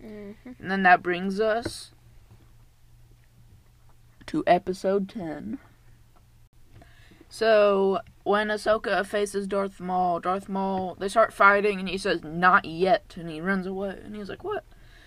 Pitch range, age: 175-205 Hz, 20-39